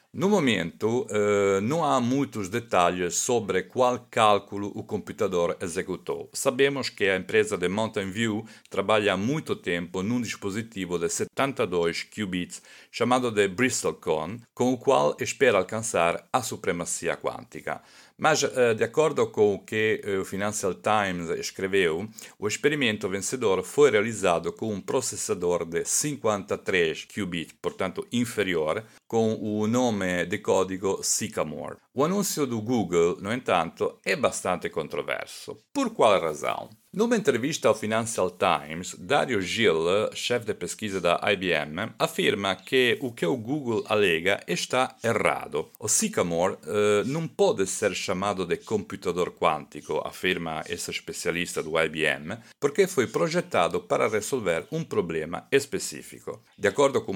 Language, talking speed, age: Portuguese, 135 wpm, 40-59